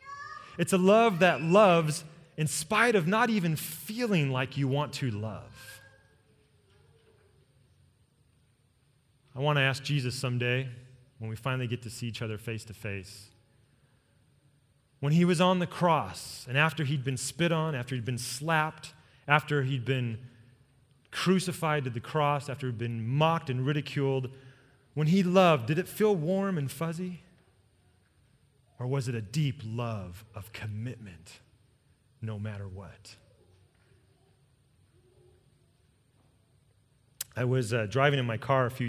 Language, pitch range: English, 120-155 Hz